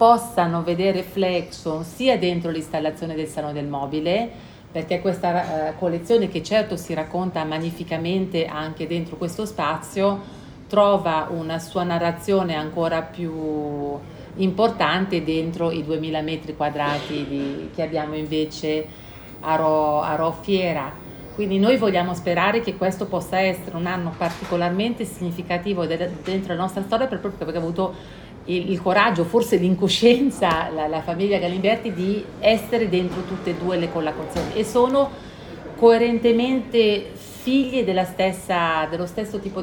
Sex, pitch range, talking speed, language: female, 160-200 Hz, 135 wpm, Italian